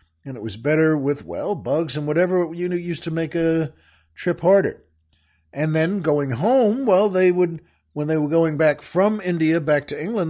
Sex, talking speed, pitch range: male, 200 wpm, 135-175 Hz